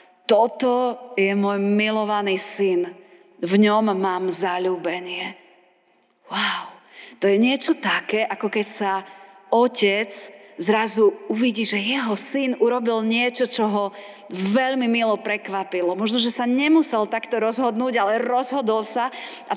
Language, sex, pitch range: Slovak, female, 185-230 Hz